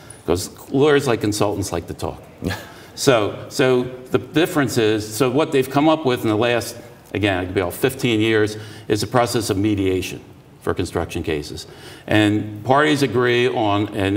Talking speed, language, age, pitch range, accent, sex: 175 wpm, English, 50-69, 100-125 Hz, American, male